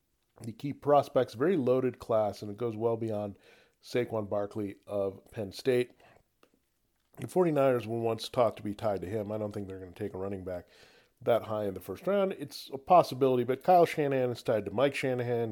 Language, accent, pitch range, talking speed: English, American, 105-130 Hz, 205 wpm